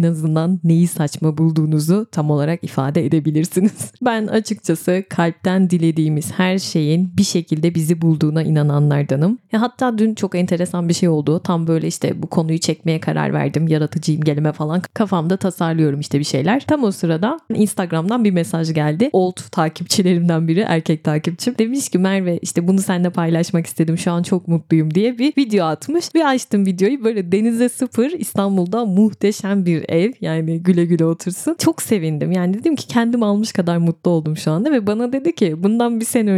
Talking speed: 175 wpm